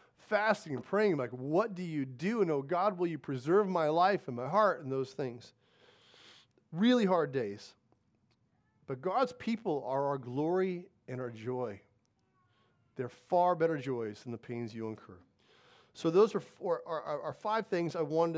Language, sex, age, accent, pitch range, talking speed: English, male, 40-59, American, 125-185 Hz, 165 wpm